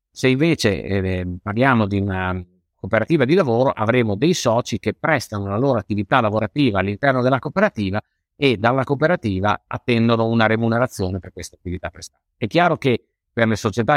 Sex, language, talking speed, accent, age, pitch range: male, Italian, 160 wpm, native, 50-69, 100-125 Hz